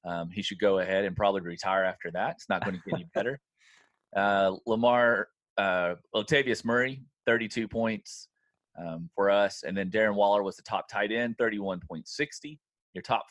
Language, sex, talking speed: English, male, 175 wpm